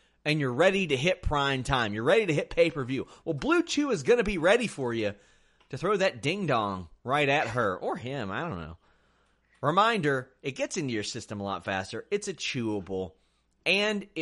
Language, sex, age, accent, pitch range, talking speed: English, male, 30-49, American, 115-165 Hz, 200 wpm